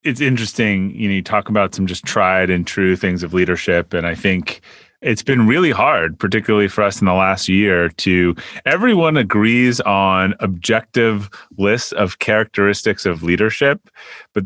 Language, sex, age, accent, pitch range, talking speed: English, male, 30-49, American, 100-140 Hz, 165 wpm